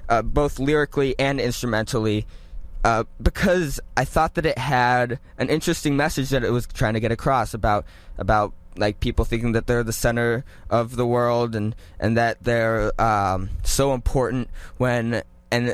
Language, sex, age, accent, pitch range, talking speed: English, male, 20-39, American, 105-145 Hz, 165 wpm